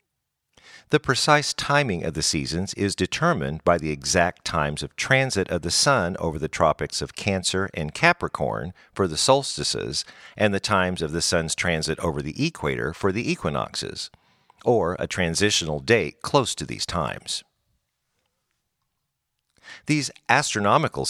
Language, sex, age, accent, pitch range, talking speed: English, male, 50-69, American, 80-110 Hz, 140 wpm